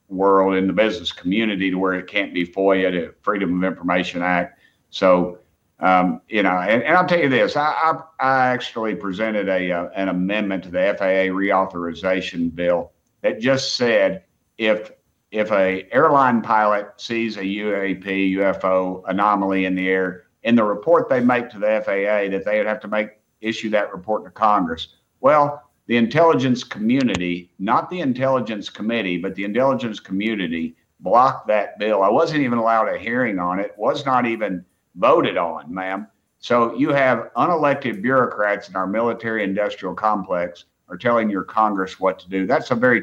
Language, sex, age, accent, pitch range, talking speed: English, male, 50-69, American, 95-115 Hz, 175 wpm